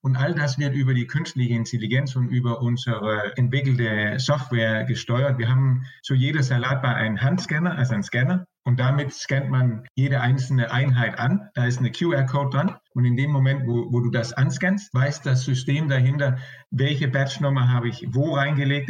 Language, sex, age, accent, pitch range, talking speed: German, male, 50-69, German, 125-140 Hz, 185 wpm